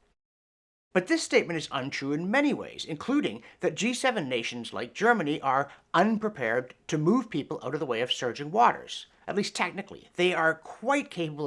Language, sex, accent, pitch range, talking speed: English, male, American, 130-210 Hz, 175 wpm